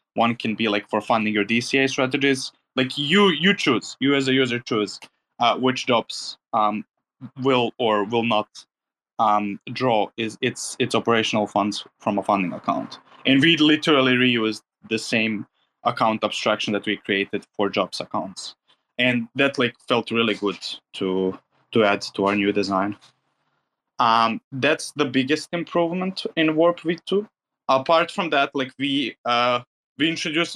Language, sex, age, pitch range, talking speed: English, male, 20-39, 110-150 Hz, 155 wpm